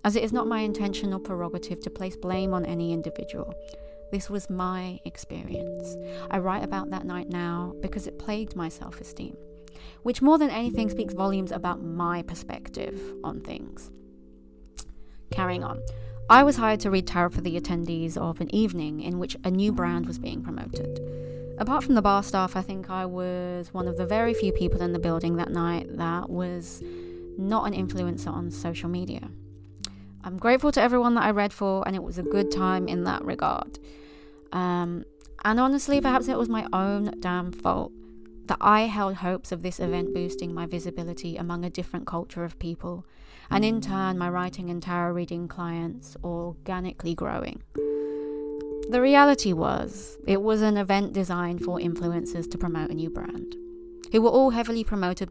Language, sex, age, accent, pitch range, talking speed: English, female, 30-49, British, 145-200 Hz, 180 wpm